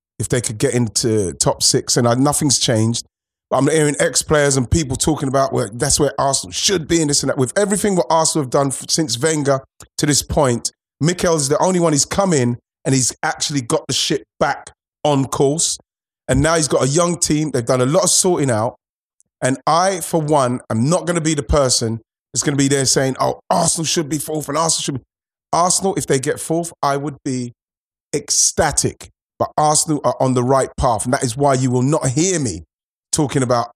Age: 30-49